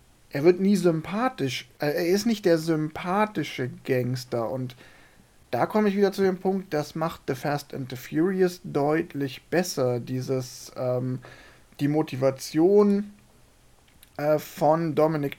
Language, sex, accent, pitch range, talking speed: German, male, German, 130-175 Hz, 135 wpm